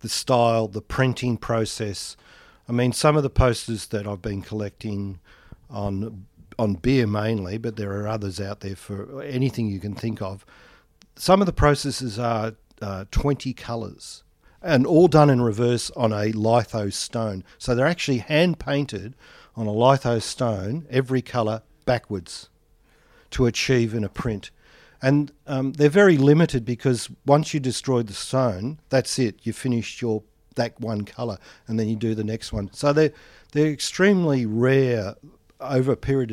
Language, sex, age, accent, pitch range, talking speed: English, male, 50-69, Australian, 110-135 Hz, 160 wpm